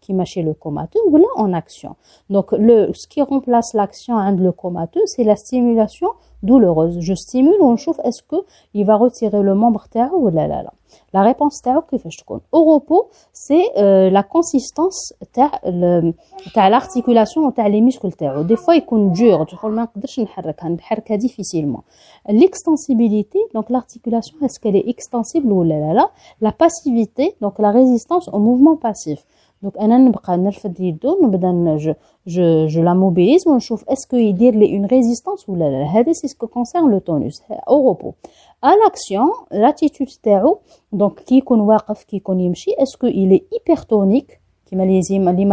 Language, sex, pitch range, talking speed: French, female, 190-270 Hz, 140 wpm